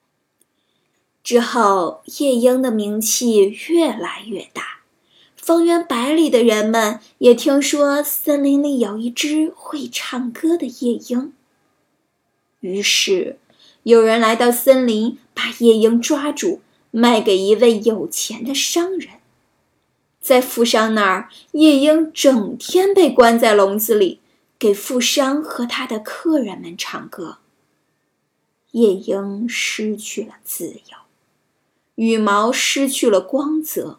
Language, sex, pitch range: Chinese, female, 215-275 Hz